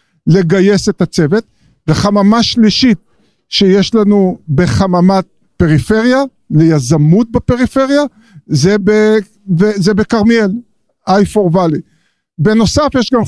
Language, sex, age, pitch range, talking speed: Hebrew, male, 50-69, 170-230 Hz, 85 wpm